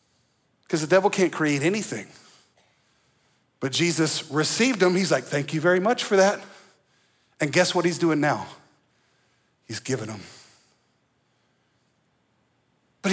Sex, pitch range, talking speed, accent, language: male, 155-250 Hz, 130 wpm, American, English